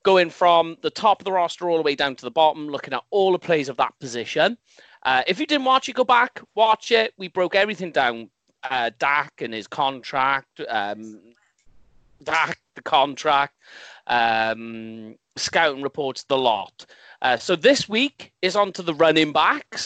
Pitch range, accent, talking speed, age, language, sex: 135-195 Hz, British, 180 wpm, 30-49, English, male